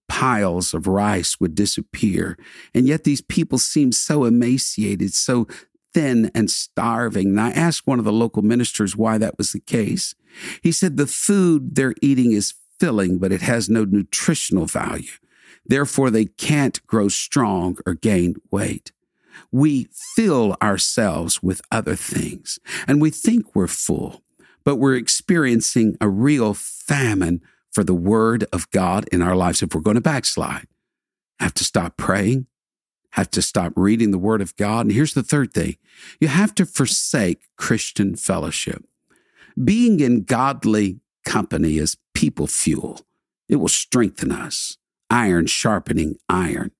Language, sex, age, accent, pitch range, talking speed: English, male, 50-69, American, 100-140 Hz, 150 wpm